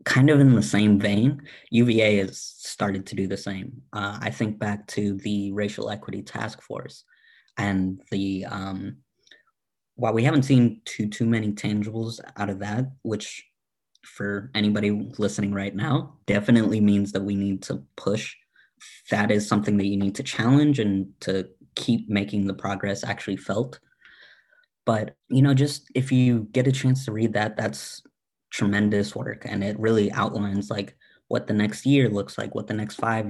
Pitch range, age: 100-125 Hz, 20-39